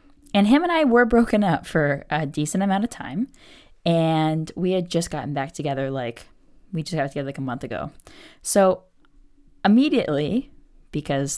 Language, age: English, 20-39